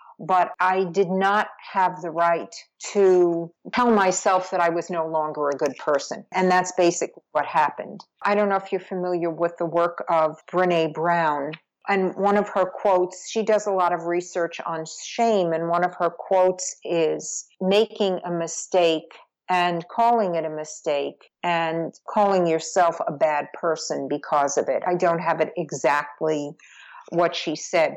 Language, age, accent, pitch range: English, 50-69, American, 165-195 Hz